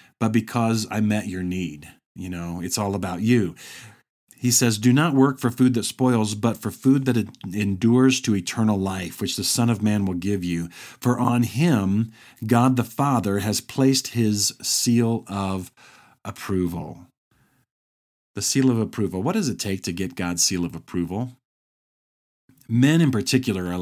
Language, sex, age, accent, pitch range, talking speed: English, male, 50-69, American, 95-120 Hz, 170 wpm